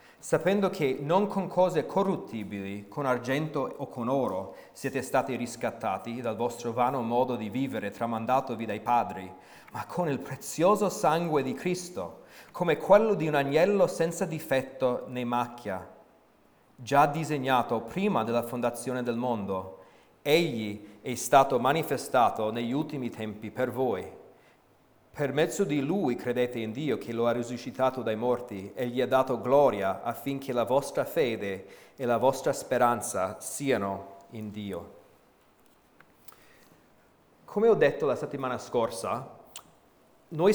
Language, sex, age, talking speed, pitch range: Italian, male, 40-59, 135 wpm, 120-155 Hz